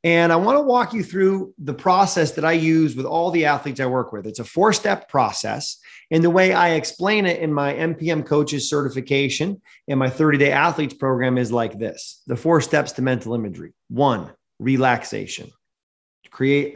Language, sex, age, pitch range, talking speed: English, male, 30-49, 120-150 Hz, 195 wpm